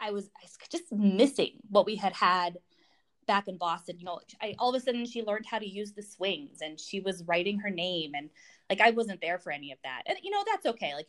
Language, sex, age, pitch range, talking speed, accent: English, female, 20-39, 170-235 Hz, 250 wpm, American